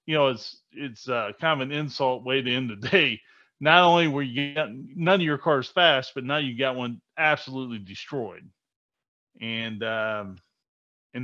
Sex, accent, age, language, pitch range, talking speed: male, American, 30-49, English, 120-150 Hz, 180 wpm